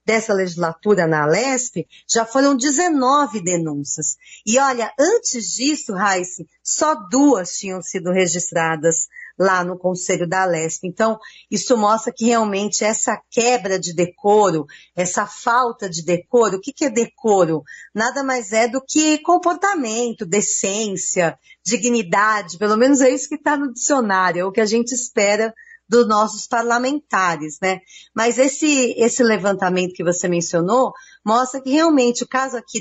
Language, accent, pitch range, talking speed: Portuguese, Brazilian, 190-260 Hz, 145 wpm